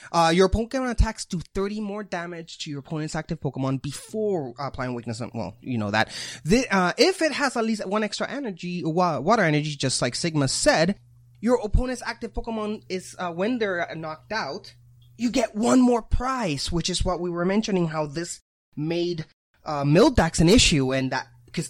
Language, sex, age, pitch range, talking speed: English, male, 20-39, 130-190 Hz, 190 wpm